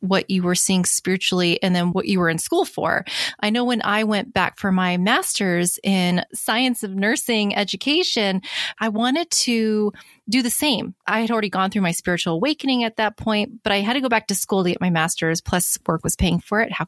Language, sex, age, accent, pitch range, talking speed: English, female, 20-39, American, 175-220 Hz, 225 wpm